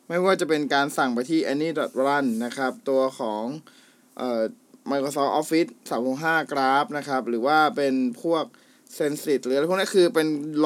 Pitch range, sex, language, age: 135-185 Hz, male, Thai, 20-39